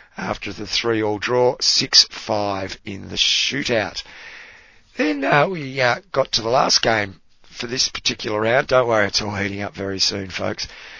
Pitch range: 105-130 Hz